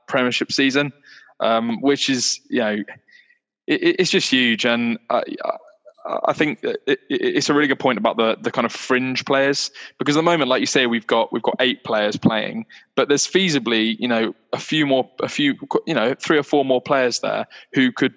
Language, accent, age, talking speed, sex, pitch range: English, British, 10-29, 210 wpm, male, 115-145 Hz